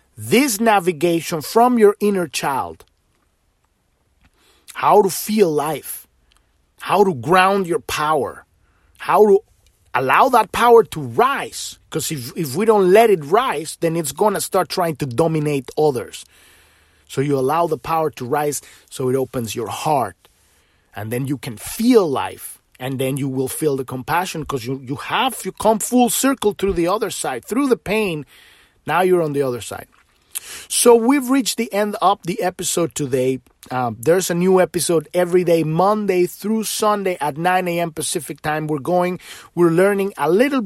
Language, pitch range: English, 145-205 Hz